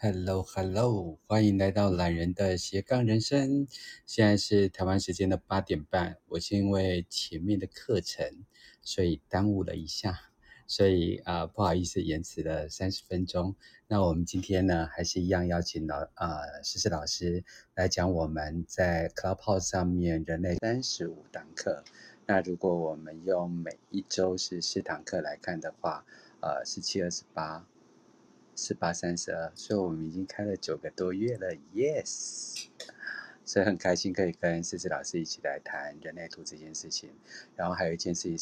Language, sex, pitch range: Chinese, male, 85-95 Hz